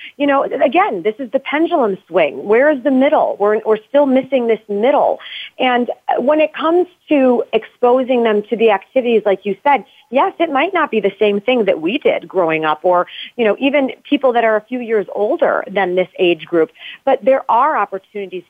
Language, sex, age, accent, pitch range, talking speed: English, female, 40-59, American, 205-260 Hz, 205 wpm